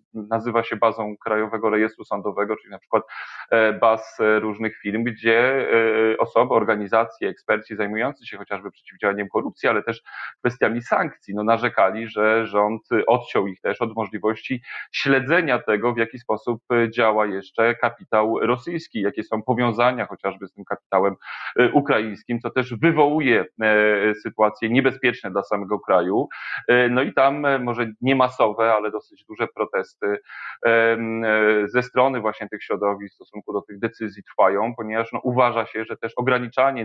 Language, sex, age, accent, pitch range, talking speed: Polish, male, 30-49, native, 105-120 Hz, 140 wpm